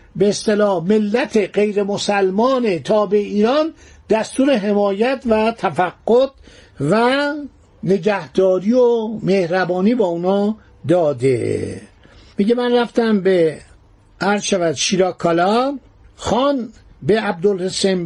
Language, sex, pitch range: Persian, male, 175-220 Hz